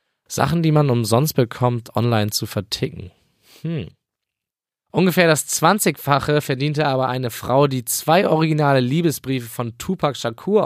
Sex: male